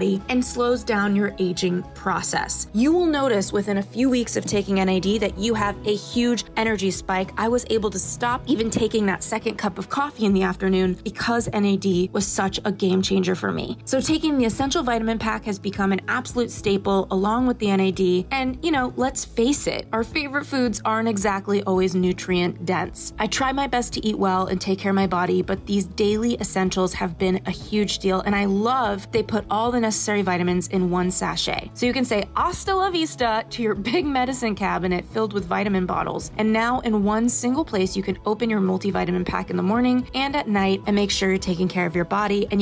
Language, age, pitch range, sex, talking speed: English, 20-39, 190-235 Hz, female, 220 wpm